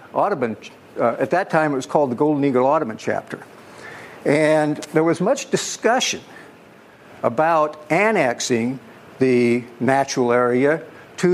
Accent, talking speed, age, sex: American, 125 wpm, 60-79, male